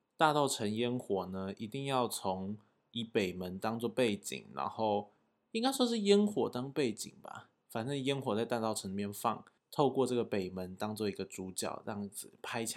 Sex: male